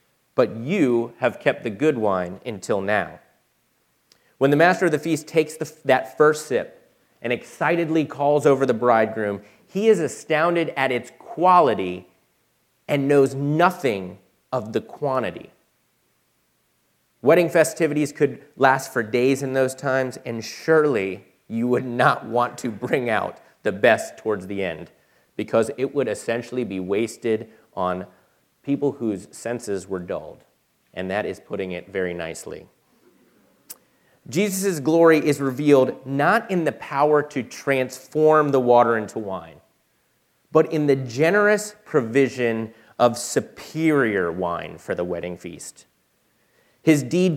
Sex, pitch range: male, 110-150 Hz